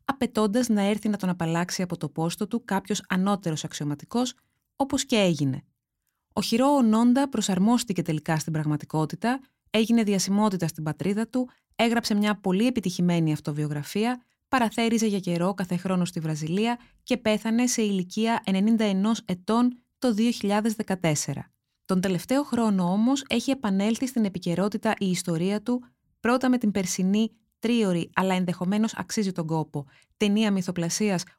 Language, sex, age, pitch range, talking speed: Greek, female, 20-39, 165-225 Hz, 140 wpm